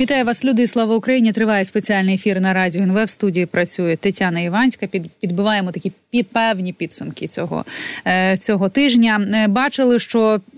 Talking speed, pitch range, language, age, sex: 140 wpm, 195-230 Hz, Ukrainian, 30-49, female